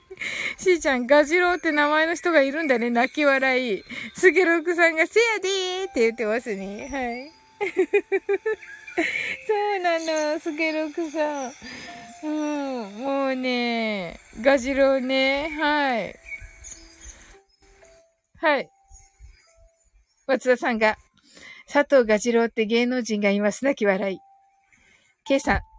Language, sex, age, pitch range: Japanese, female, 20-39, 230-340 Hz